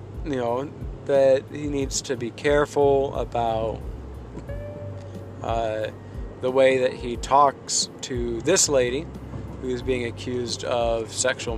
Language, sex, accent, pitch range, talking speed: English, male, American, 110-140 Hz, 120 wpm